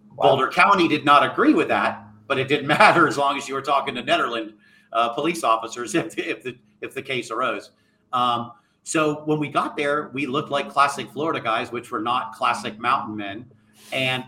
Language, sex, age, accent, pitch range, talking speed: English, male, 40-59, American, 125-160 Hz, 200 wpm